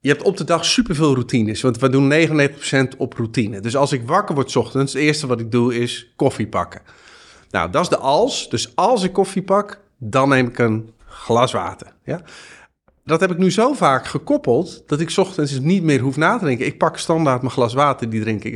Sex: male